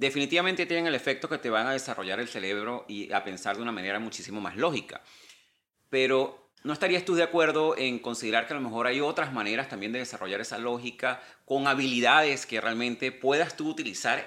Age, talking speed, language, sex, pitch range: 30-49, 200 wpm, Spanish, male, 110-140 Hz